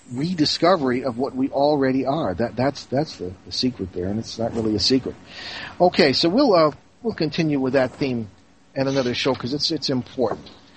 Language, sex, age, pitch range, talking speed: English, male, 40-59, 120-155 Hz, 195 wpm